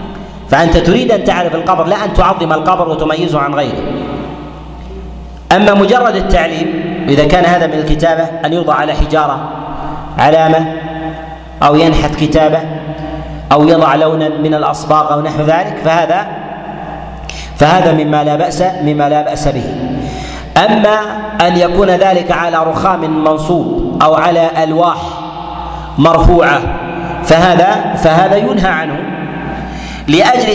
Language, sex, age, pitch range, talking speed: Arabic, male, 40-59, 155-180 Hz, 120 wpm